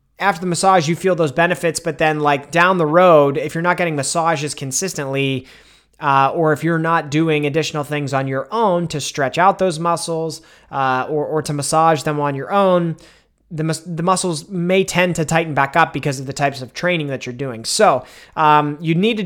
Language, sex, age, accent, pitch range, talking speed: English, male, 30-49, American, 140-170 Hz, 210 wpm